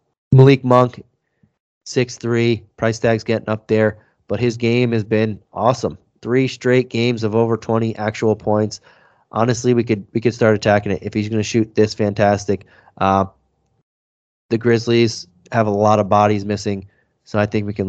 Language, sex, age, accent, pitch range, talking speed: English, male, 20-39, American, 105-120 Hz, 170 wpm